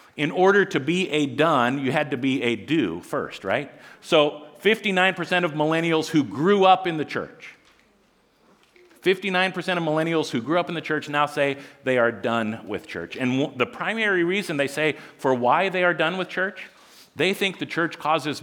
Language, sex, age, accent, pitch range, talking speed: English, male, 50-69, American, 135-180 Hz, 190 wpm